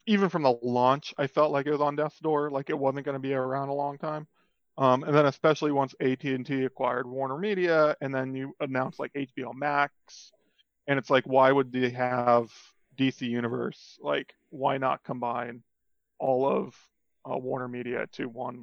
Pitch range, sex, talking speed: 130-150 Hz, male, 205 wpm